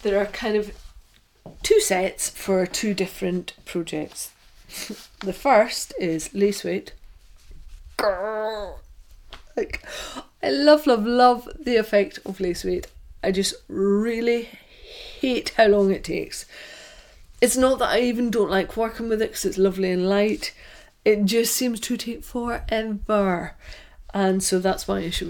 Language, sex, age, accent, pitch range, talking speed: English, female, 40-59, British, 180-215 Hz, 140 wpm